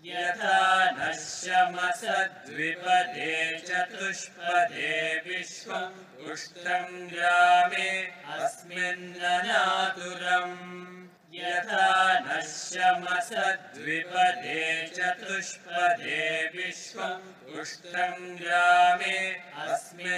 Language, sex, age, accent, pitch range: Tamil, male, 30-49, native, 175-185 Hz